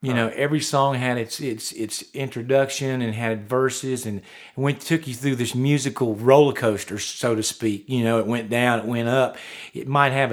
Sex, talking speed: male, 210 wpm